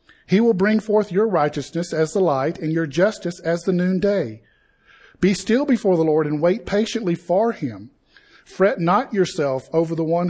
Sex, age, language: male, 50-69, English